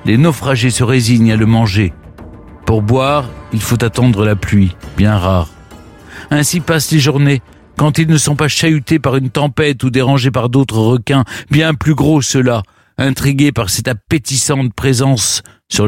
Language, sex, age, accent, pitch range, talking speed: French, male, 50-69, French, 115-165 Hz, 165 wpm